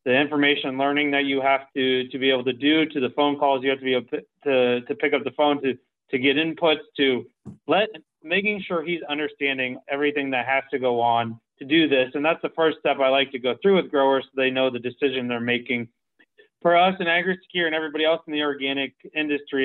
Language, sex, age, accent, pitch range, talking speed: English, male, 30-49, American, 135-155 Hz, 235 wpm